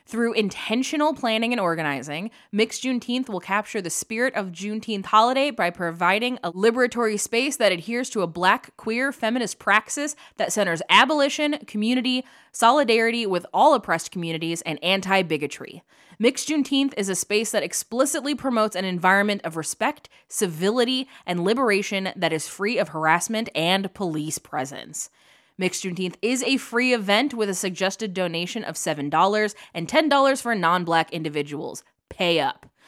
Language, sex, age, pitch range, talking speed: English, female, 20-39, 180-255 Hz, 145 wpm